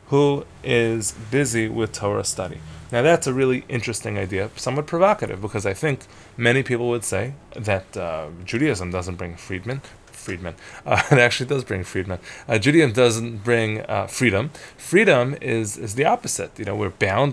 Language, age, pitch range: English, 20-39, 100-125 Hz